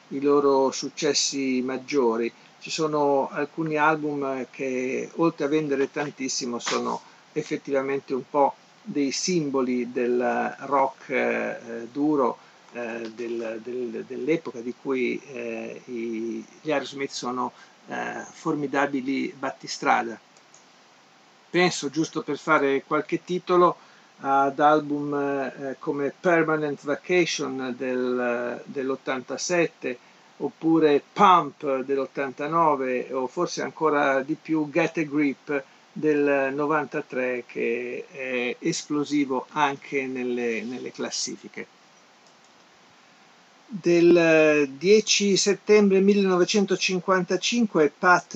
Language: Italian